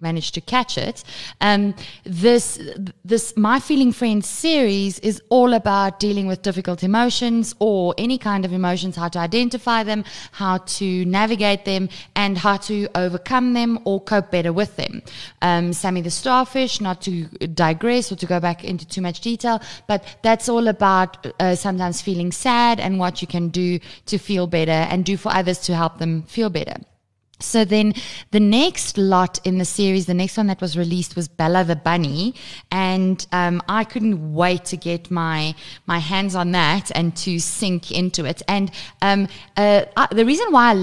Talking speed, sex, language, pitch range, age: 180 wpm, female, English, 180-215 Hz, 20-39